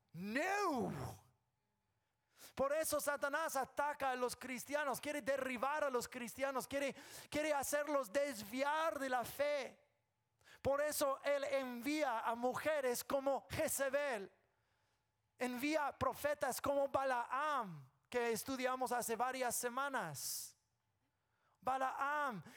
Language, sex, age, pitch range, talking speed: English, male, 30-49, 170-255 Hz, 100 wpm